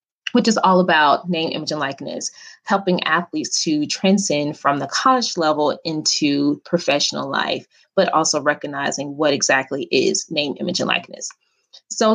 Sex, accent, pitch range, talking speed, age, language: female, American, 150-215 Hz, 150 wpm, 20-39, English